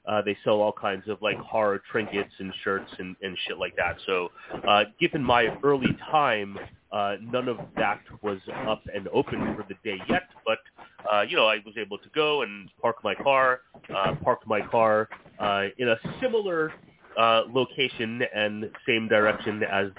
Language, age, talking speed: English, 30-49, 185 wpm